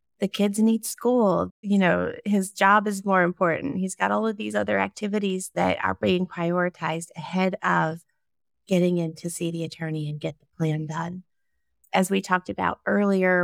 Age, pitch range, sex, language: 30-49, 165-190 Hz, female, English